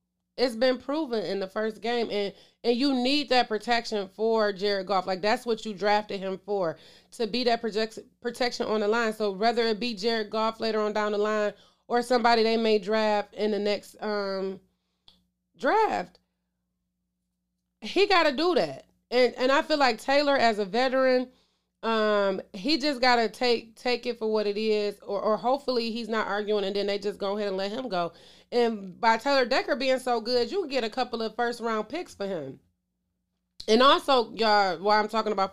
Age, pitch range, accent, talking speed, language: 30-49, 200-240 Hz, American, 200 wpm, English